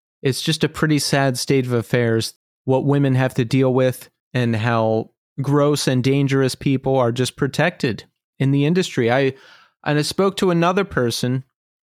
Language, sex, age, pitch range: English, male, 30-49, 125-155 Hz